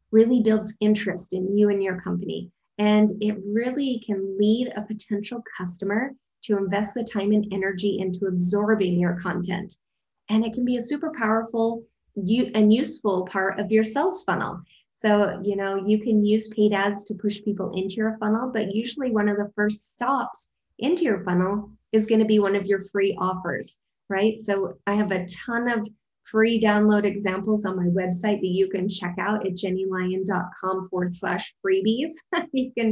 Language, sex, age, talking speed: English, female, 20-39, 180 wpm